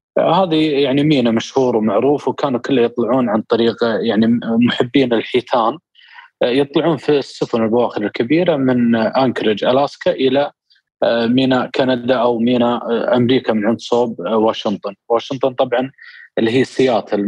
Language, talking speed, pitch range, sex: Arabic, 125 wpm, 120-145 Hz, male